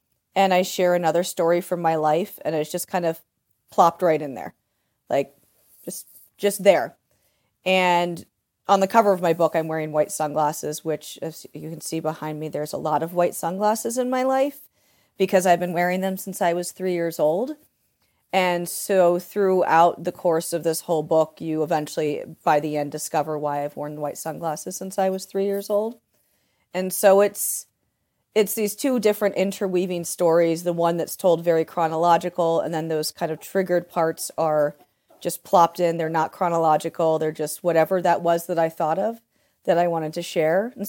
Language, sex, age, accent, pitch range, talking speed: English, female, 30-49, American, 160-200 Hz, 190 wpm